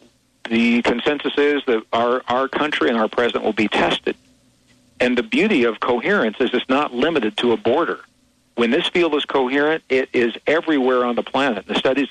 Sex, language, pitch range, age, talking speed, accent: male, English, 110-140 Hz, 50-69, 190 wpm, American